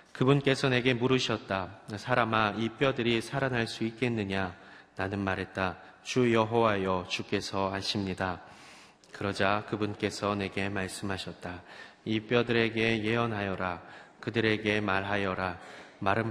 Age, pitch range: 30-49, 100-120 Hz